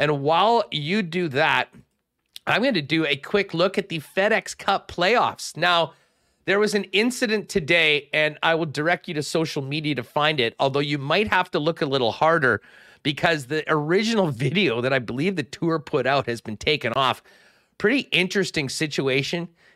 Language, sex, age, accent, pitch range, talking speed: English, male, 40-59, American, 140-185 Hz, 185 wpm